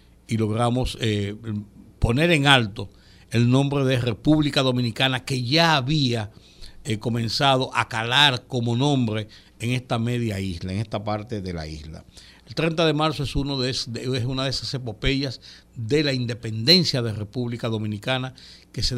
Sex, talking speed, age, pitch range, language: male, 150 wpm, 60-79, 105-135 Hz, Spanish